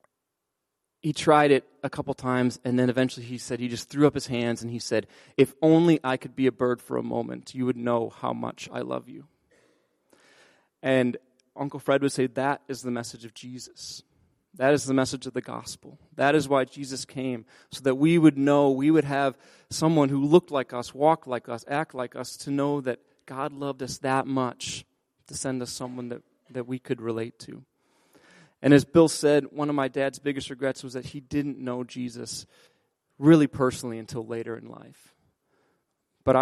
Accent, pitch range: American, 125-145 Hz